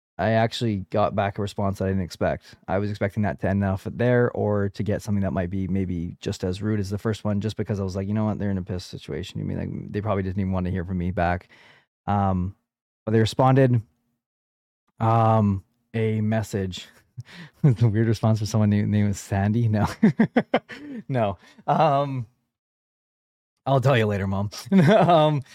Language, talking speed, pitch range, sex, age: English, 195 wpm, 100-120 Hz, male, 20-39